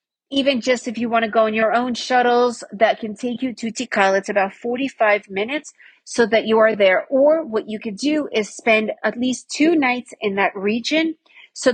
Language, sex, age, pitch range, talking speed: English, female, 40-59, 215-265 Hz, 210 wpm